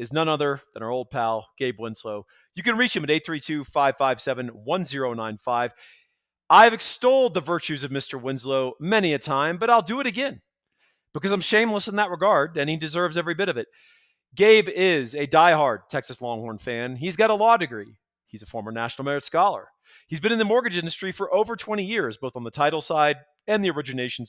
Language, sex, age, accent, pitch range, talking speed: English, male, 40-59, American, 125-185 Hz, 195 wpm